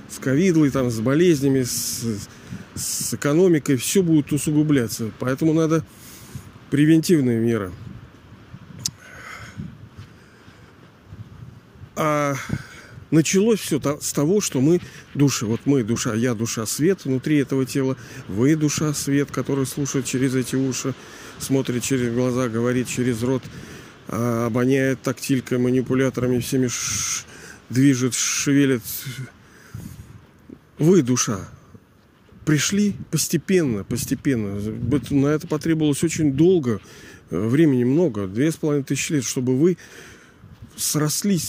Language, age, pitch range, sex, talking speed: Russian, 40-59, 120-155 Hz, male, 95 wpm